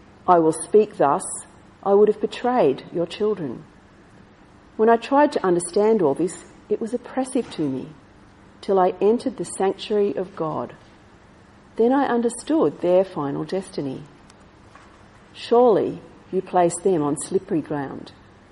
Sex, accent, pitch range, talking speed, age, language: female, Australian, 150-205 Hz, 135 wpm, 50-69, English